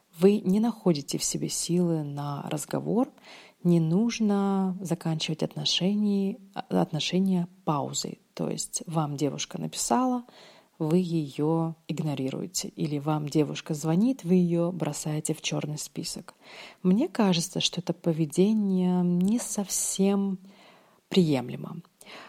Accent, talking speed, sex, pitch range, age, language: native, 105 wpm, female, 160-195 Hz, 30-49, Russian